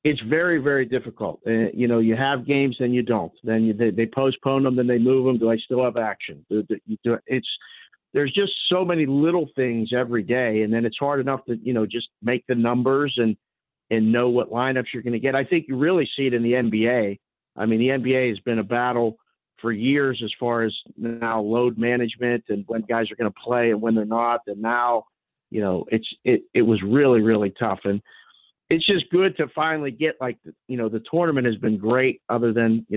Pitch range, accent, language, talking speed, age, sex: 115-135 Hz, American, English, 230 wpm, 50-69, male